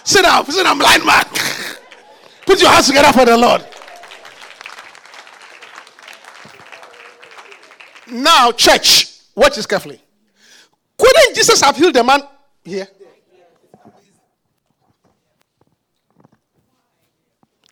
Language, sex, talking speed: English, male, 85 wpm